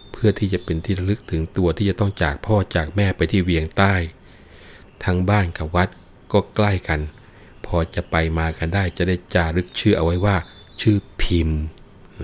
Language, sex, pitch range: Thai, male, 80-95 Hz